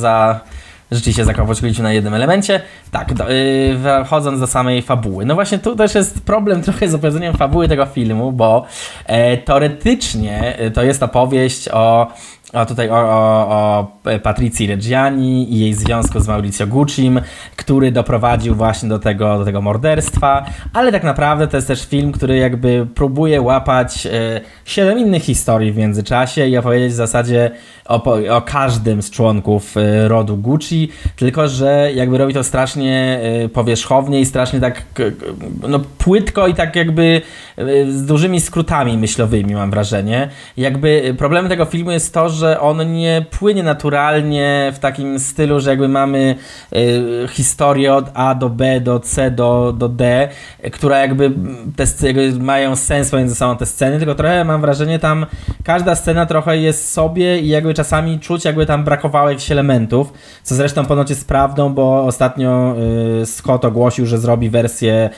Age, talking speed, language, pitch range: 20-39, 165 wpm, Polish, 115-145 Hz